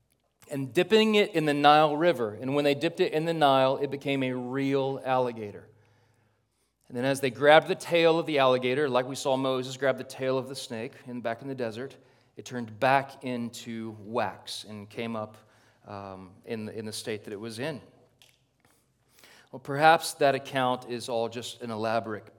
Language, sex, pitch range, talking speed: English, male, 115-140 Hz, 195 wpm